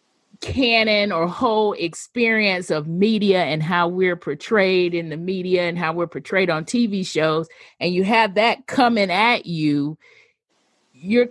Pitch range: 160-205 Hz